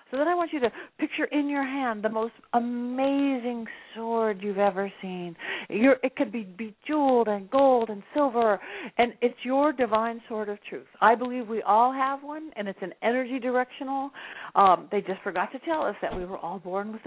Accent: American